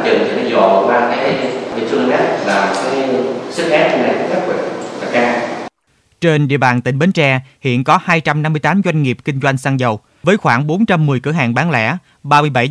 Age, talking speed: 20-39, 115 wpm